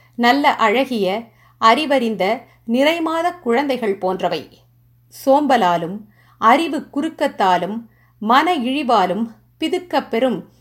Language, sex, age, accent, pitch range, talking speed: Tamil, female, 50-69, native, 195-275 Hz, 70 wpm